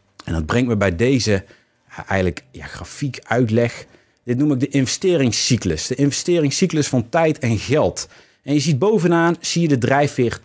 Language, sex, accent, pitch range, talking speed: Dutch, male, Dutch, 105-145 Hz, 165 wpm